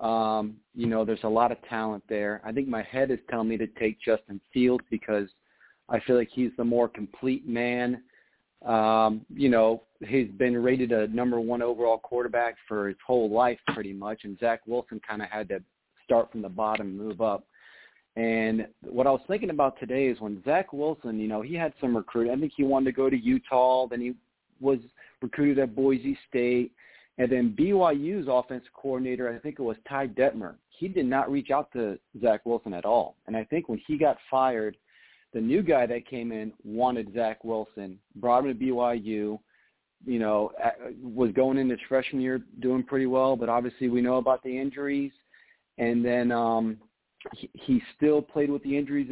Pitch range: 110-130 Hz